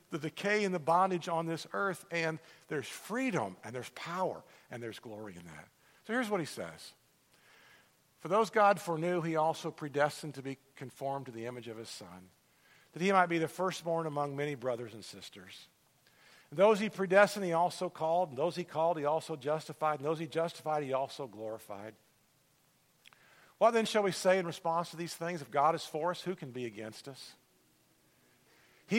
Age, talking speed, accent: 50-69, 185 wpm, American